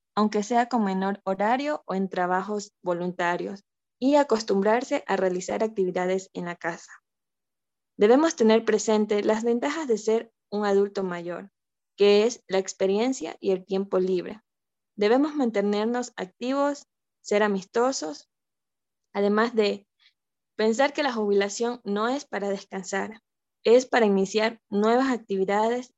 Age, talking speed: 20-39, 125 wpm